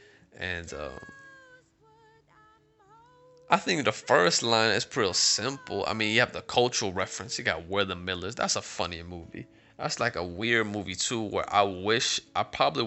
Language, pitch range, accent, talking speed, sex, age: English, 95-145 Hz, American, 175 wpm, male, 20-39